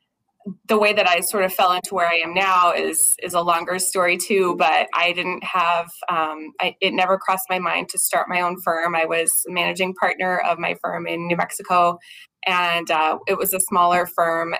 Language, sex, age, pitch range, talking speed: English, female, 20-39, 170-190 Hz, 210 wpm